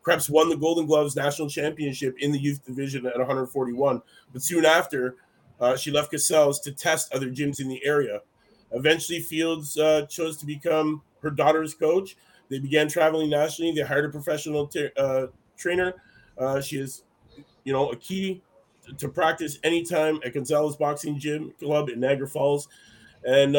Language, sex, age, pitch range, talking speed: English, male, 30-49, 135-155 Hz, 170 wpm